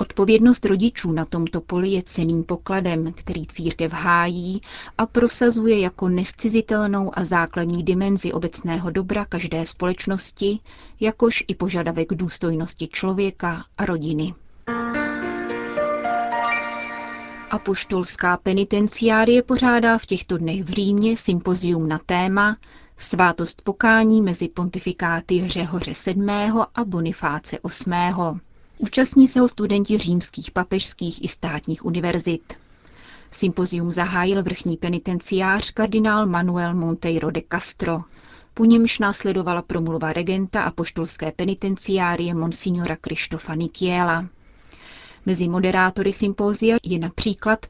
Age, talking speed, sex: 30-49, 105 wpm, female